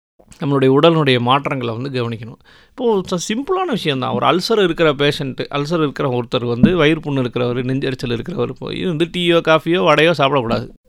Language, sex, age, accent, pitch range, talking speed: English, male, 30-49, Indian, 125-175 Hz, 115 wpm